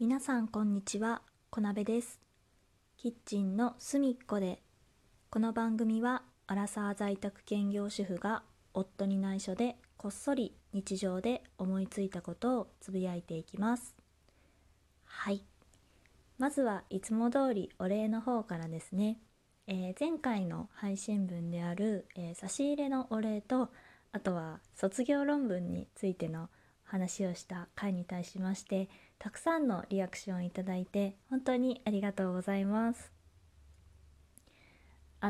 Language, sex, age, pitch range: Japanese, female, 20-39, 180-240 Hz